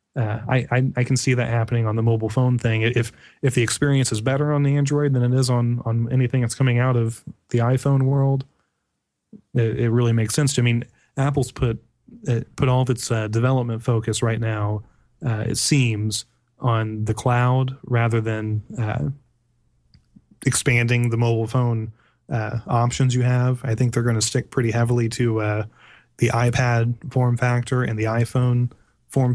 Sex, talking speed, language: male, 185 wpm, English